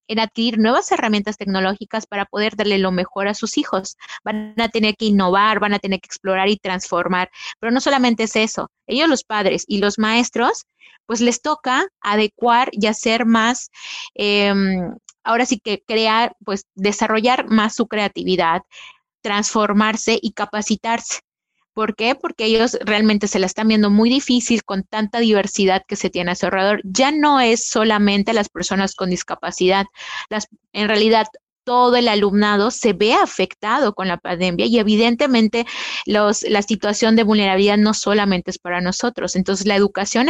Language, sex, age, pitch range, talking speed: Spanish, female, 30-49, 200-235 Hz, 165 wpm